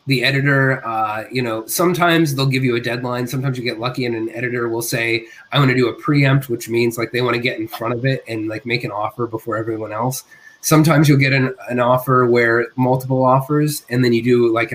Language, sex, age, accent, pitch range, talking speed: English, male, 20-39, American, 120-140 Hz, 240 wpm